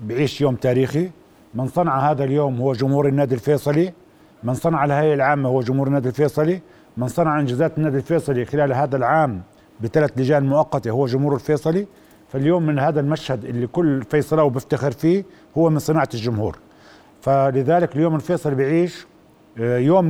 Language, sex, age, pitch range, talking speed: Arabic, male, 50-69, 130-160 Hz, 150 wpm